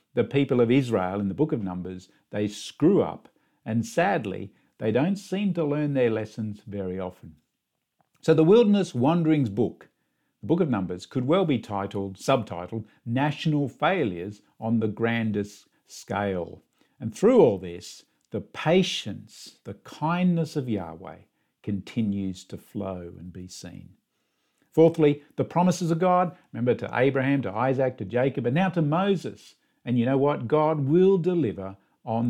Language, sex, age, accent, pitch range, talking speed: English, male, 50-69, Australian, 105-155 Hz, 155 wpm